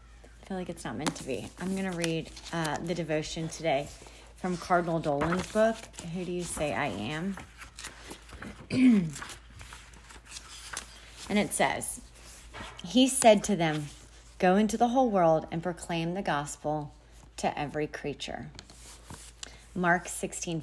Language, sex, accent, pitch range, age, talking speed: English, female, American, 145-200 Hz, 30-49, 130 wpm